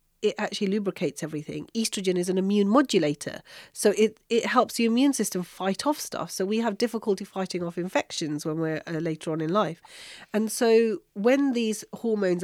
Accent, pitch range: British, 160-205 Hz